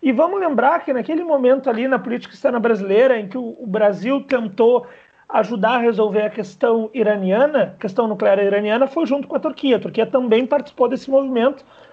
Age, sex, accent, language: 40-59, male, Brazilian, Portuguese